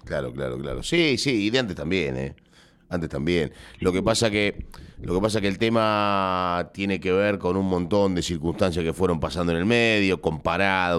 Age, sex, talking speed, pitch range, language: 40-59, male, 200 wpm, 90-110 Hz, Spanish